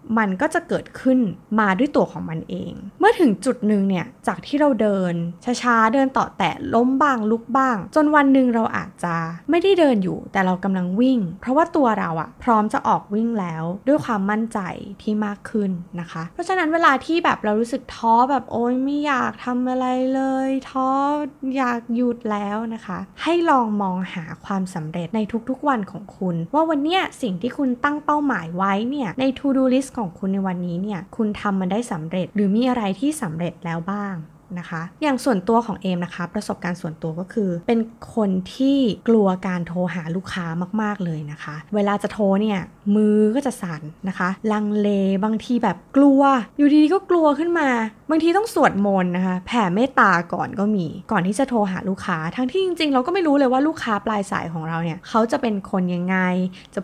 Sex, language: female, Thai